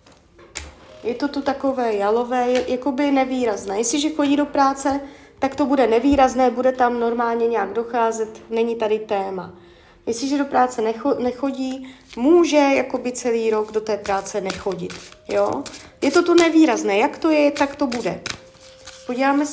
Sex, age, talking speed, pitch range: female, 30-49, 150 wpm, 225-290 Hz